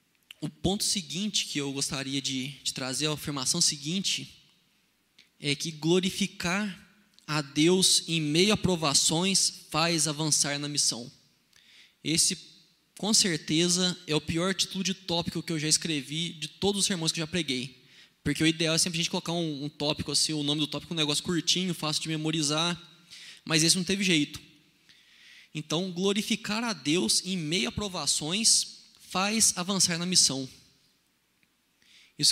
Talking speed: 160 wpm